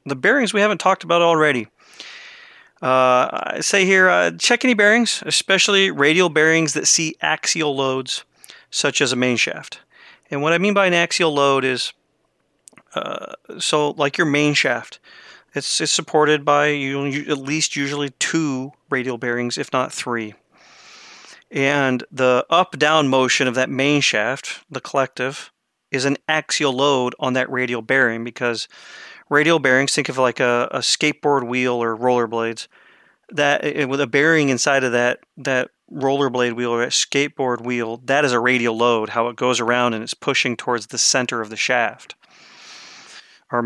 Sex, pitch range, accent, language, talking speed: male, 125-160 Hz, American, English, 165 wpm